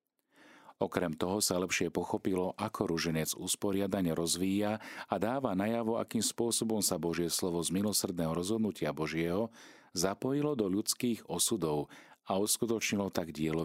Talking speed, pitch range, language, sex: 125 wpm, 85-105 Hz, Slovak, male